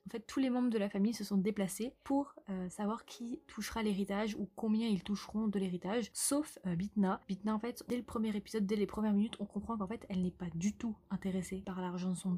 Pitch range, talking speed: 195-225 Hz, 245 wpm